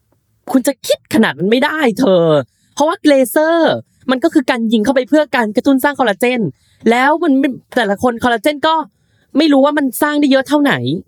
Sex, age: female, 10-29